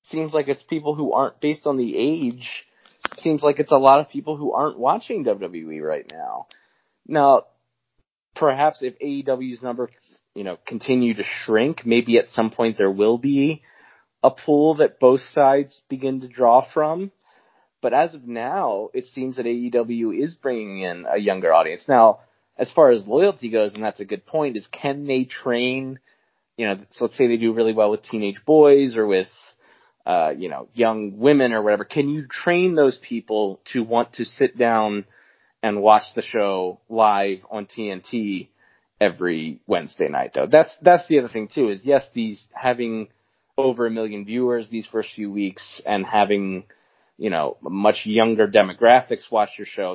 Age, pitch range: 20-39, 110-140 Hz